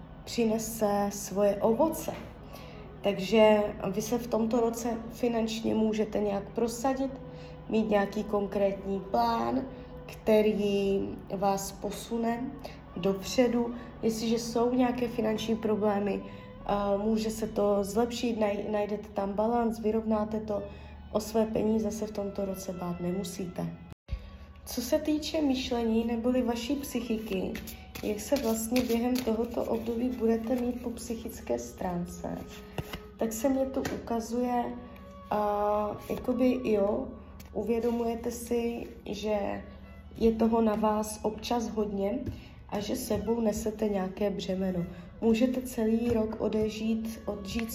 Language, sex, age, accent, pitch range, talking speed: Czech, female, 20-39, native, 200-235 Hz, 115 wpm